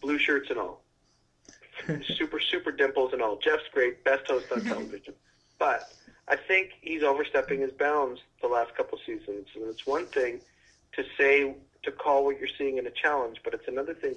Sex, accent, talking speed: male, American, 190 wpm